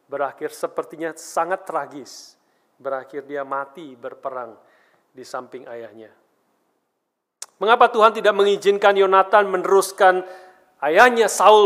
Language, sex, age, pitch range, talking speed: Indonesian, male, 40-59, 165-215 Hz, 100 wpm